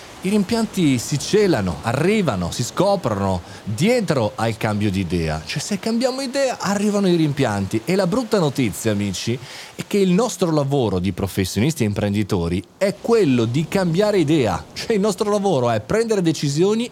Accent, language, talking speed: native, Italian, 160 wpm